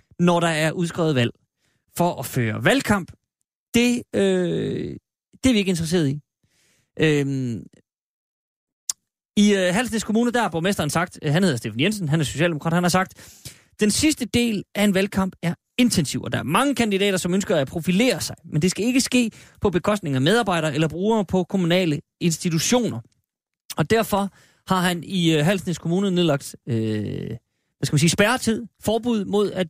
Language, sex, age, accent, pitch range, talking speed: Danish, male, 30-49, native, 145-200 Hz, 165 wpm